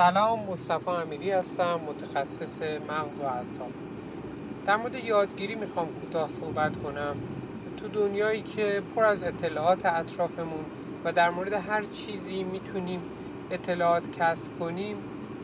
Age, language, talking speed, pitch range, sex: 30-49, Persian, 120 wpm, 165-200 Hz, male